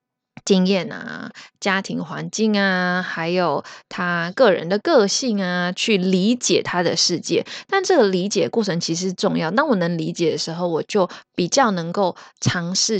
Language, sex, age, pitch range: Chinese, female, 20-39, 170-215 Hz